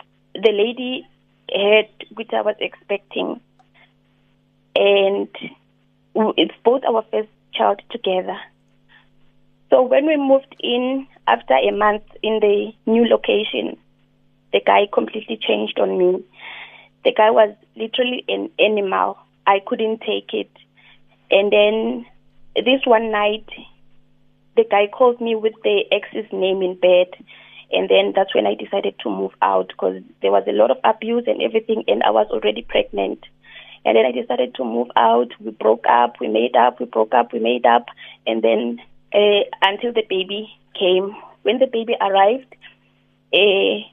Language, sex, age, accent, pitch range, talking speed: English, female, 30-49, South African, 195-235 Hz, 150 wpm